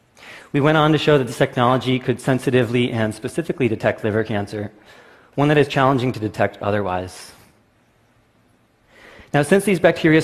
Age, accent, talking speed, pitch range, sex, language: 30-49, American, 150 wpm, 105-135 Hz, male, English